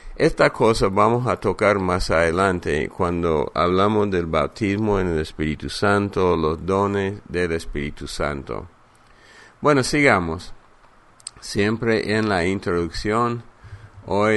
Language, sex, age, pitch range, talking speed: English, male, 50-69, 90-110 Hz, 115 wpm